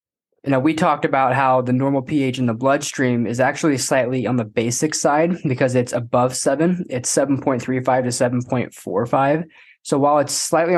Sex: male